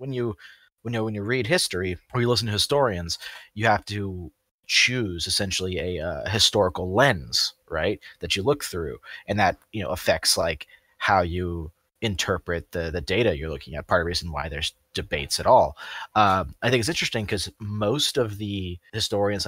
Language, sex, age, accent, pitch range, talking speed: English, male, 30-49, American, 90-115 Hz, 190 wpm